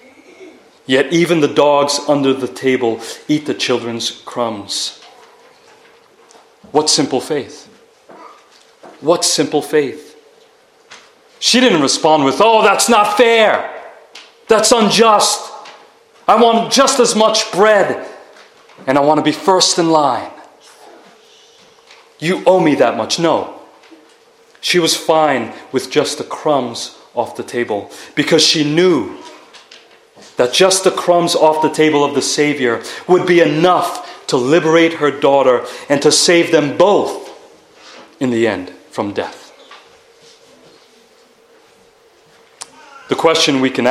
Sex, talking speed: male, 125 wpm